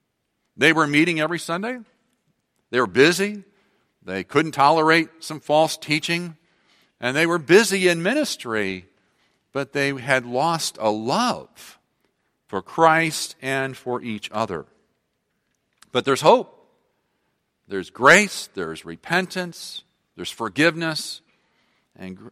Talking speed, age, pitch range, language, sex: 115 wpm, 50-69, 125-170 Hz, English, male